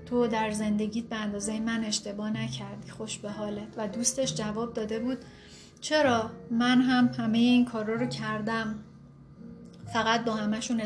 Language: Persian